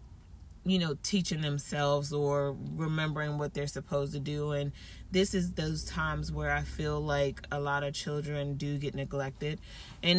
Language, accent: English, American